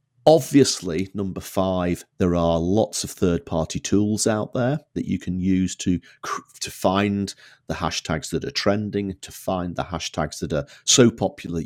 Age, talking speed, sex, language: 40-59, 160 wpm, male, English